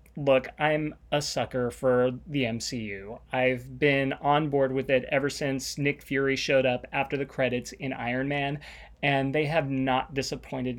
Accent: American